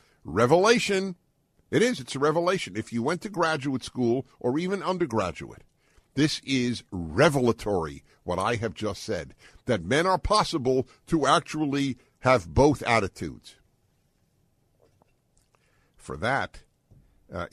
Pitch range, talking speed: 110-150 Hz, 120 wpm